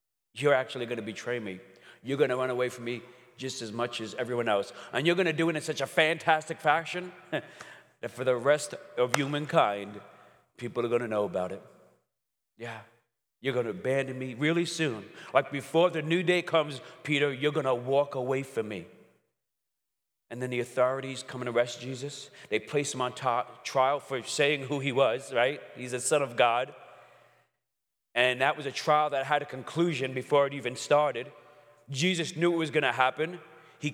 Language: English